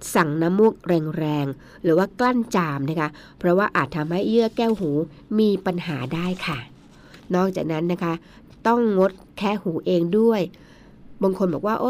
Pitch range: 165-215 Hz